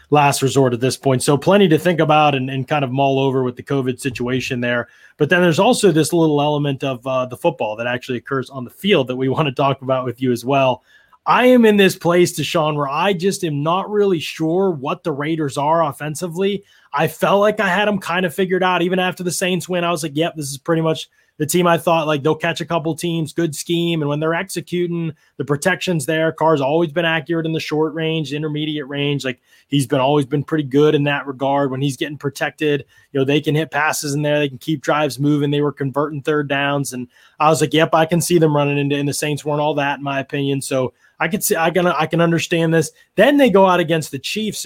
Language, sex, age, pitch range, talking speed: English, male, 20-39, 140-175 Hz, 250 wpm